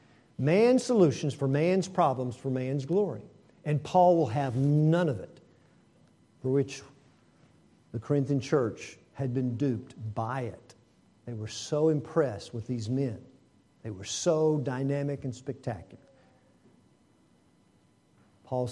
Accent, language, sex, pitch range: American, English, male, 130-195 Hz